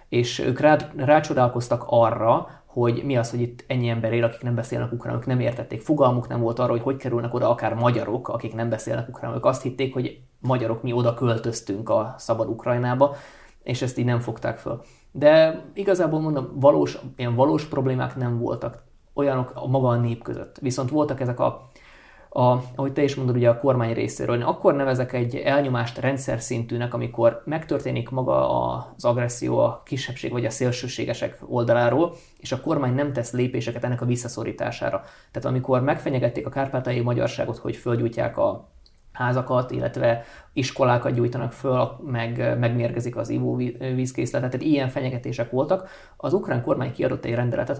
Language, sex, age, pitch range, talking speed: Hungarian, male, 20-39, 120-135 Hz, 165 wpm